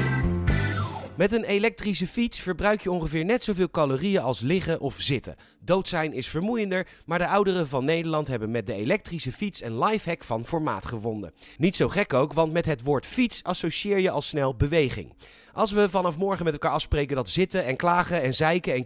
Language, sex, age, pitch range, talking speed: Dutch, male, 30-49, 135-190 Hz, 195 wpm